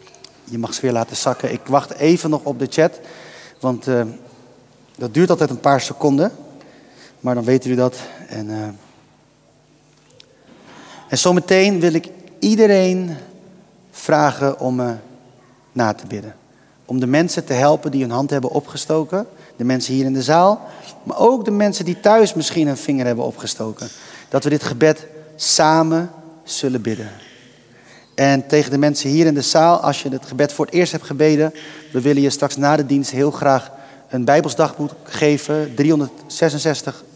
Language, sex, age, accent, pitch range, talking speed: Dutch, male, 30-49, Dutch, 125-155 Hz, 165 wpm